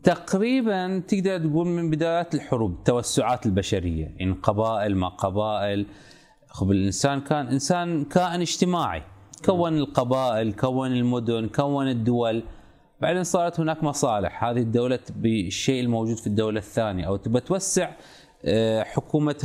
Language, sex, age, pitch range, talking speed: Arabic, male, 30-49, 100-150 Hz, 125 wpm